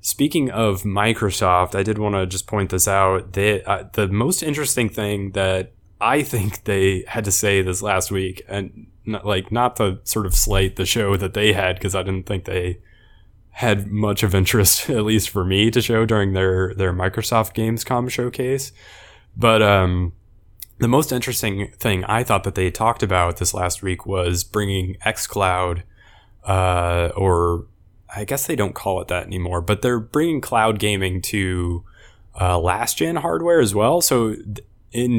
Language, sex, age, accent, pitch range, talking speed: English, male, 20-39, American, 95-115 Hz, 175 wpm